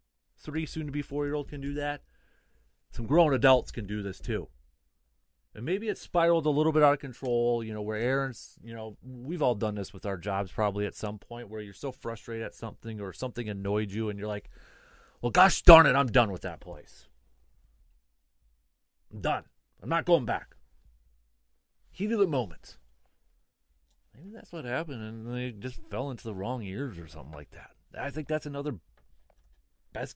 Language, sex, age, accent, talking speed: English, male, 30-49, American, 185 wpm